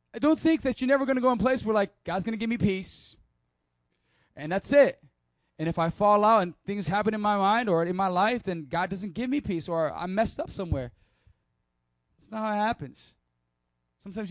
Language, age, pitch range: English, 20-39, 130-195 Hz